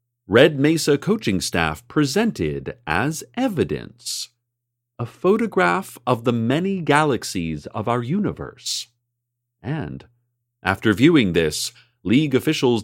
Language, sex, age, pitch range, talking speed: English, male, 40-59, 95-120 Hz, 105 wpm